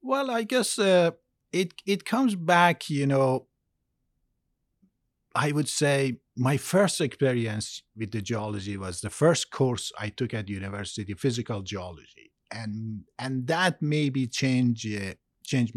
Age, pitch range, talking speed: 50-69, 105-135 Hz, 140 wpm